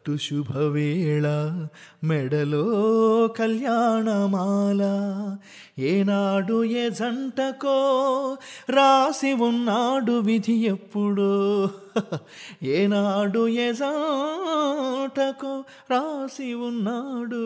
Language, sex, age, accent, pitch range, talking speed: Telugu, male, 30-49, native, 155-235 Hz, 50 wpm